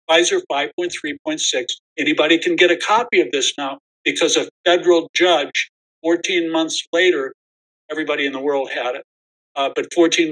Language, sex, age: English, male, 60-79